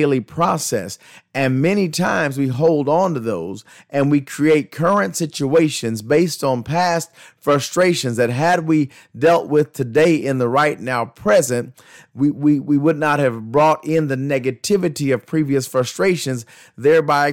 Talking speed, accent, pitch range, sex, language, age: 150 wpm, American, 130-155 Hz, male, English, 30-49